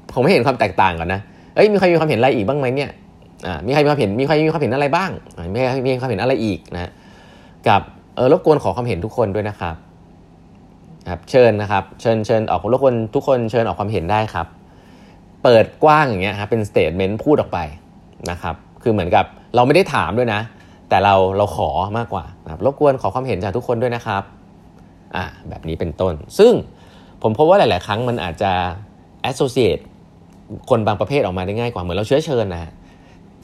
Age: 20-39